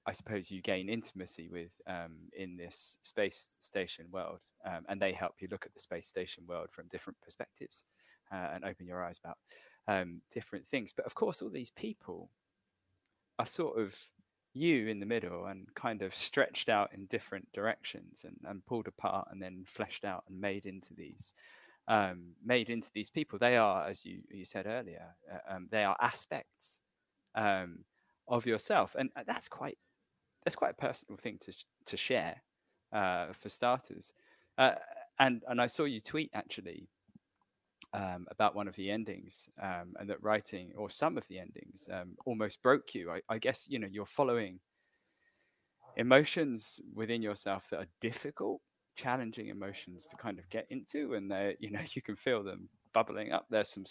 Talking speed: 180 wpm